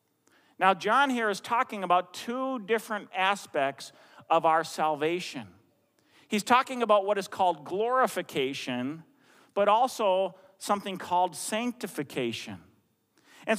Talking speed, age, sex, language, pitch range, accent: 110 wpm, 40-59, male, English, 195-265 Hz, American